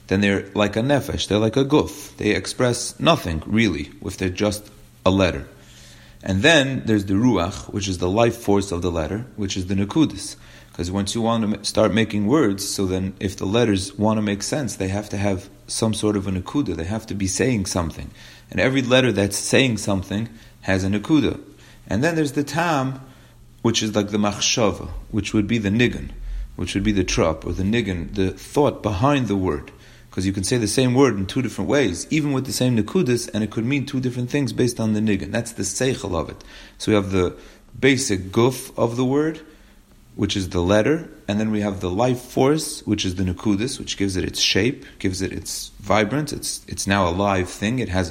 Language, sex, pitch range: English, male, 100-125 Hz